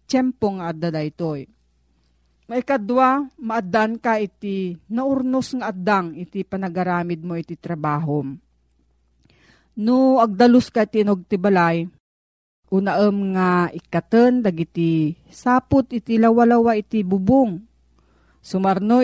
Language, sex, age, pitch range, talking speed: Filipino, female, 40-59, 165-225 Hz, 100 wpm